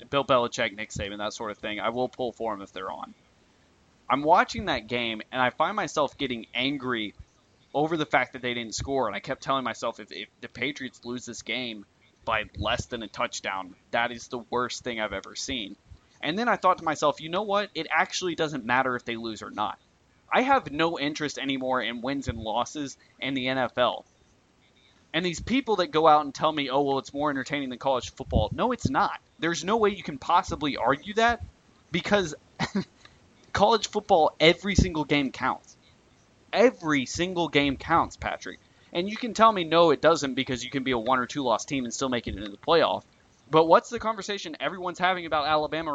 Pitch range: 120-160 Hz